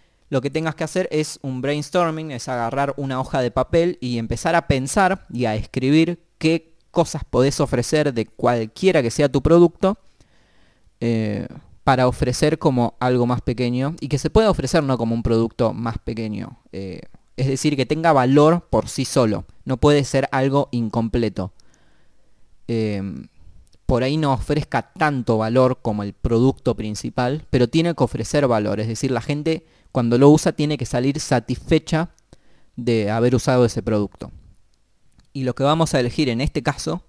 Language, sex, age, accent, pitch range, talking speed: Spanish, male, 20-39, Argentinian, 115-150 Hz, 165 wpm